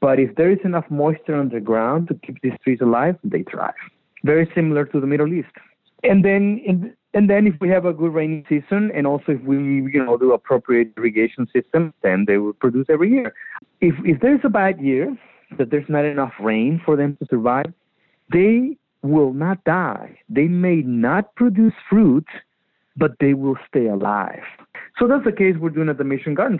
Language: English